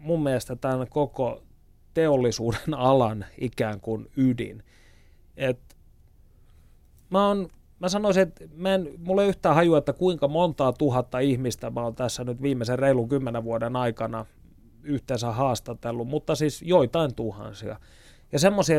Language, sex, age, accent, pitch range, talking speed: Finnish, male, 30-49, native, 115-150 Hz, 135 wpm